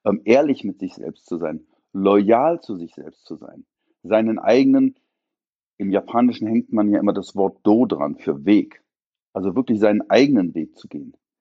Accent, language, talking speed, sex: German, German, 175 wpm, male